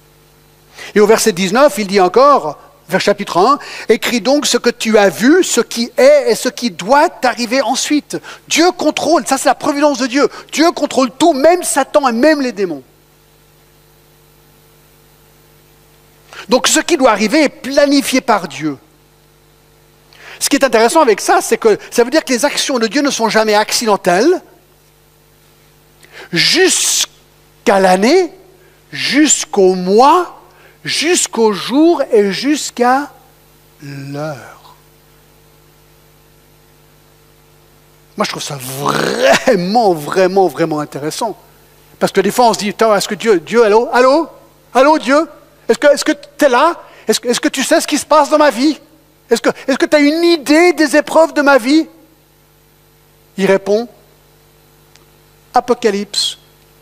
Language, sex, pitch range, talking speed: French, male, 200-300 Hz, 145 wpm